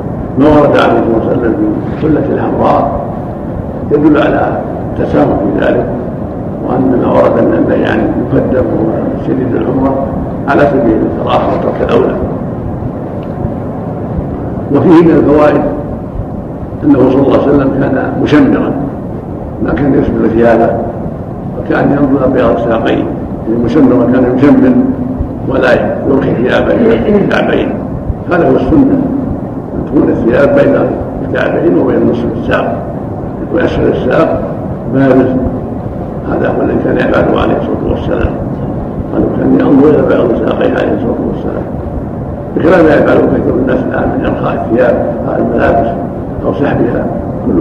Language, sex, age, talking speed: Arabic, male, 60-79, 125 wpm